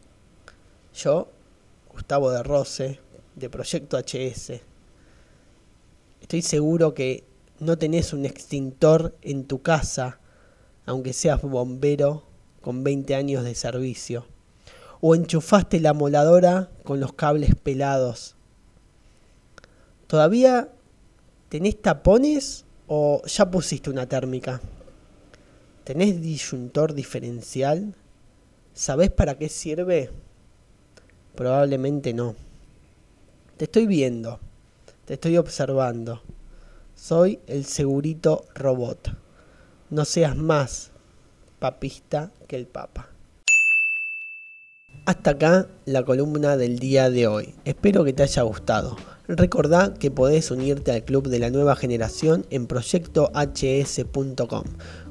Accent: Argentinian